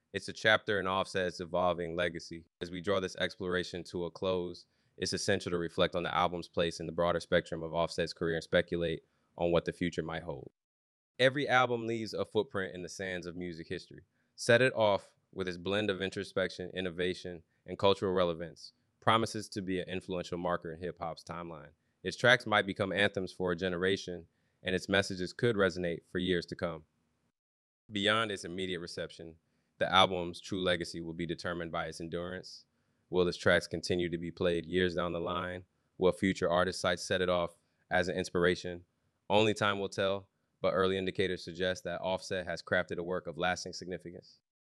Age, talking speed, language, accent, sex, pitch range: 20-39, 190 wpm, English, American, male, 85-95 Hz